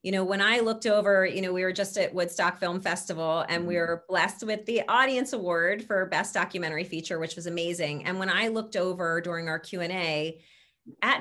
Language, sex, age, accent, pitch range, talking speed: English, female, 30-49, American, 170-215 Hz, 210 wpm